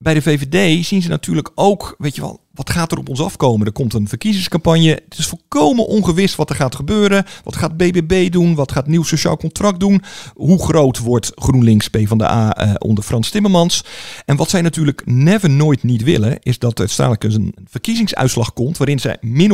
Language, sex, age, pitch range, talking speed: Dutch, male, 50-69, 115-160 Hz, 200 wpm